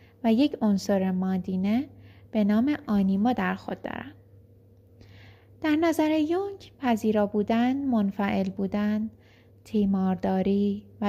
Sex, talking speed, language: female, 105 wpm, Persian